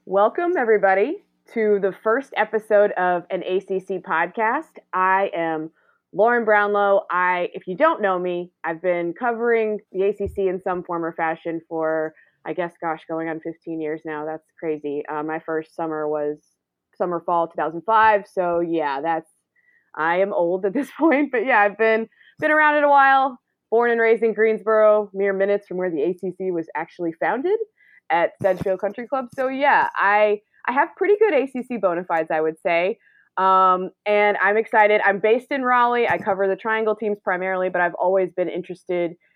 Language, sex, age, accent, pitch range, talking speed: English, female, 20-39, American, 175-220 Hz, 175 wpm